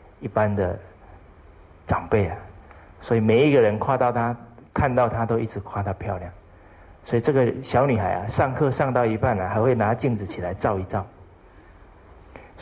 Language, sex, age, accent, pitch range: Chinese, male, 50-69, native, 85-115 Hz